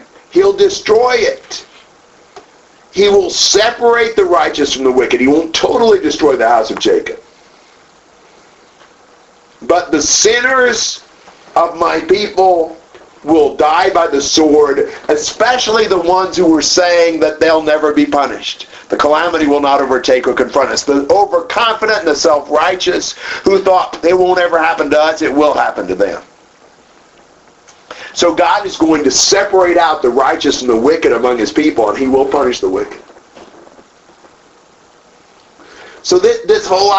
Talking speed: 150 wpm